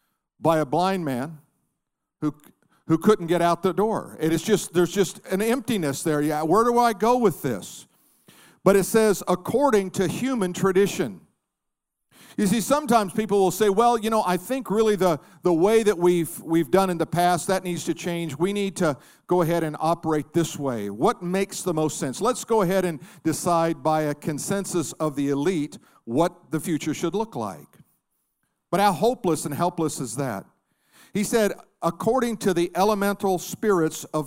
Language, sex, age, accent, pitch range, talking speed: English, male, 50-69, American, 160-200 Hz, 185 wpm